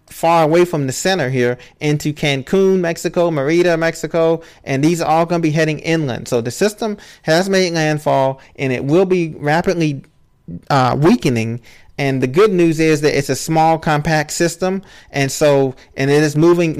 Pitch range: 145-170 Hz